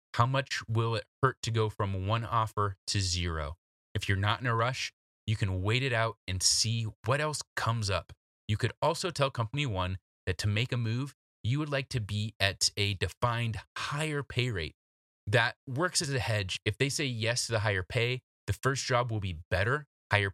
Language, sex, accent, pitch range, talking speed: English, male, American, 95-120 Hz, 210 wpm